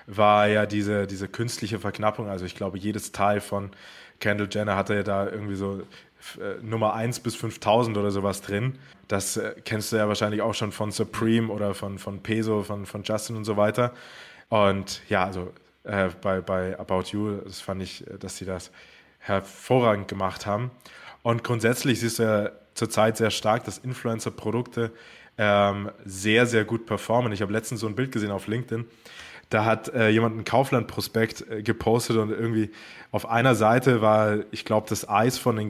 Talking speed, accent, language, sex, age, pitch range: 175 wpm, German, German, male, 20-39, 100-115 Hz